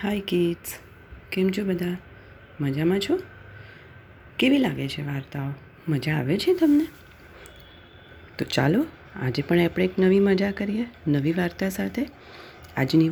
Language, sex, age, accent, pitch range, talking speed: Gujarati, female, 30-49, native, 130-195 Hz, 130 wpm